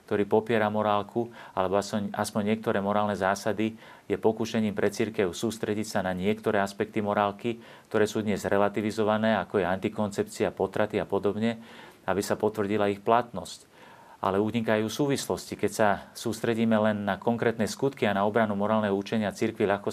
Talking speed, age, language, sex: 150 wpm, 40-59, Slovak, male